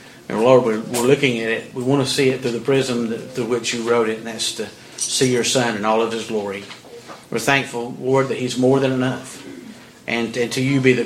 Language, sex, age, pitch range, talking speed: English, male, 50-69, 115-135 Hz, 245 wpm